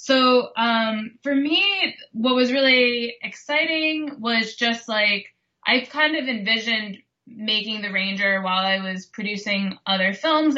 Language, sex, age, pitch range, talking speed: English, female, 20-39, 190-235 Hz, 135 wpm